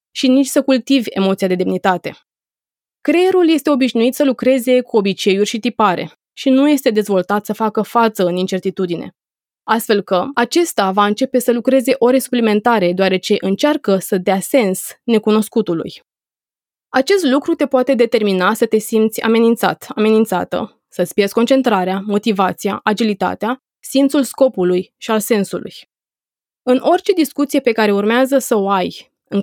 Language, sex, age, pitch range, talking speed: Romanian, female, 20-39, 200-260 Hz, 140 wpm